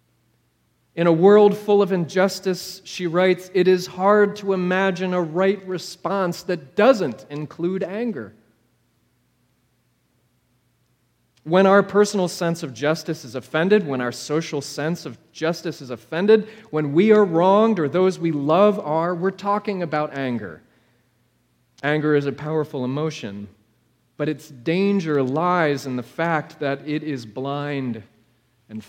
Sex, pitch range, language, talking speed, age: male, 125-175 Hz, English, 135 wpm, 30-49